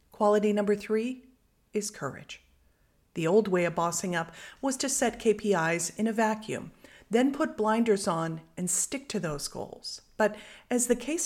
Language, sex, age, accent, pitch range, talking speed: English, female, 40-59, American, 180-240 Hz, 165 wpm